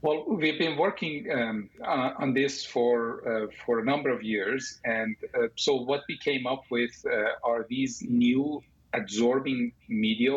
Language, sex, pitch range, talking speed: English, male, 110-140 Hz, 170 wpm